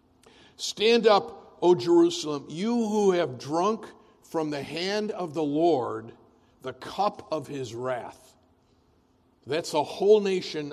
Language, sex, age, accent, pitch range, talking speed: English, male, 60-79, American, 125-170 Hz, 130 wpm